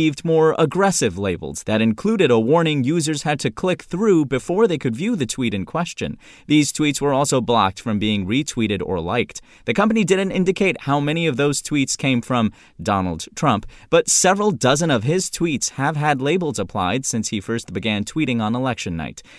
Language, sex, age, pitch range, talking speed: English, male, 30-49, 110-155 Hz, 190 wpm